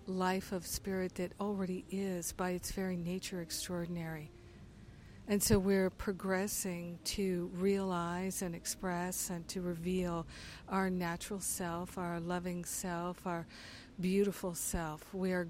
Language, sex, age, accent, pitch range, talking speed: English, female, 50-69, American, 170-185 Hz, 130 wpm